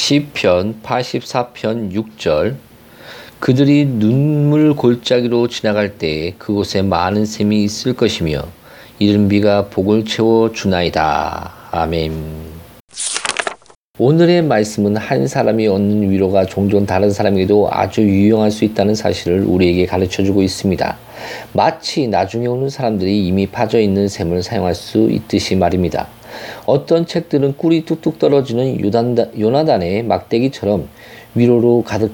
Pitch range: 95-120 Hz